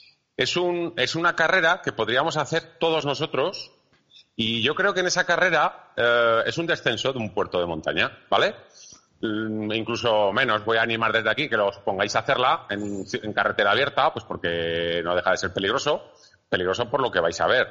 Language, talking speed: Spanish, 195 wpm